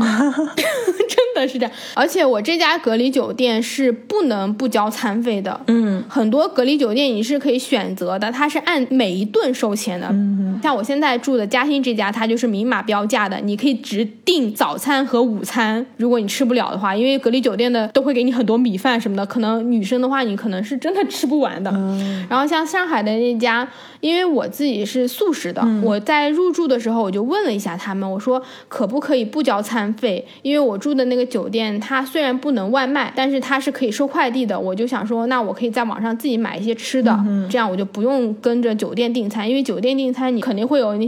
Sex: female